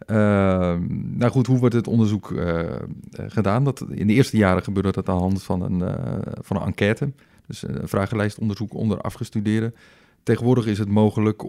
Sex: male